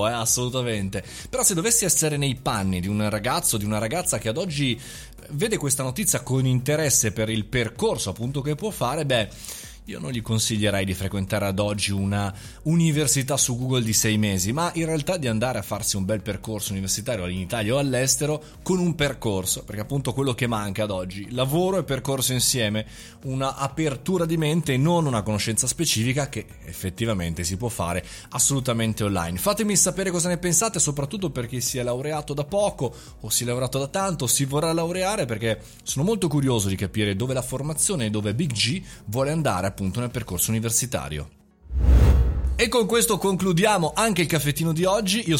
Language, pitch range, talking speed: Italian, 110-155 Hz, 185 wpm